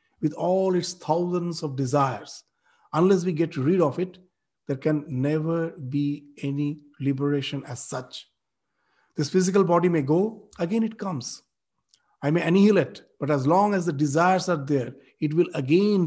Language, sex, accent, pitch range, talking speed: English, male, Indian, 145-185 Hz, 155 wpm